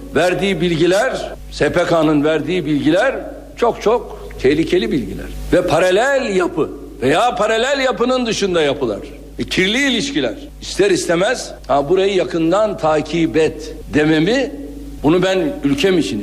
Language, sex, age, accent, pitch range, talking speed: Turkish, male, 60-79, native, 160-220 Hz, 120 wpm